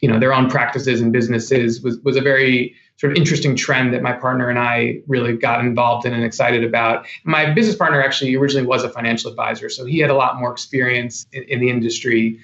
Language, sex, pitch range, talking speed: English, male, 125-150 Hz, 225 wpm